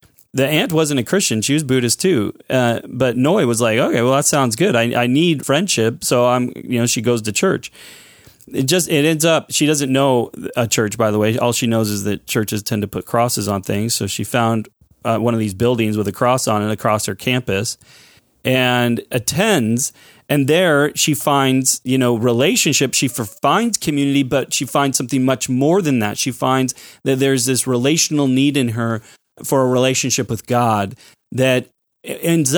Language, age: English, 30-49